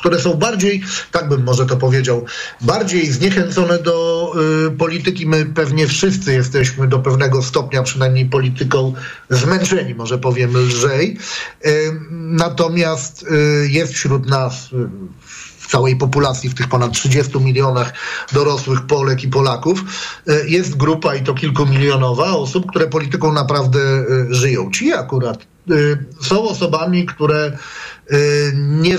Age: 40-59